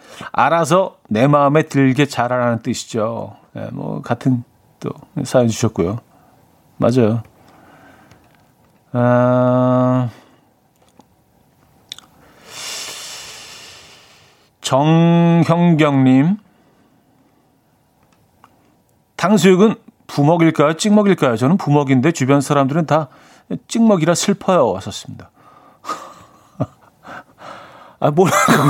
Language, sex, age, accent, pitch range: Korean, male, 40-59, native, 125-175 Hz